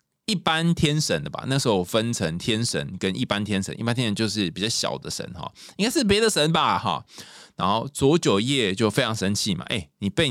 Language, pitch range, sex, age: Chinese, 100-150 Hz, male, 20-39